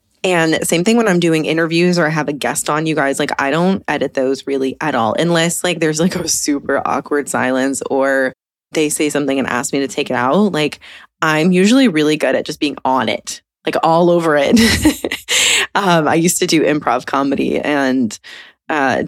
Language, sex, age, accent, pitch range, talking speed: English, female, 20-39, American, 140-180 Hz, 205 wpm